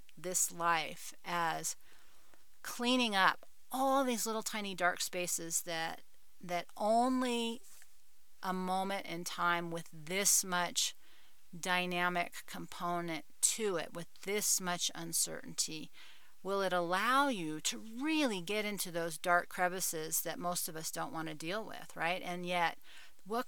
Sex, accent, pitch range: female, American, 175-215 Hz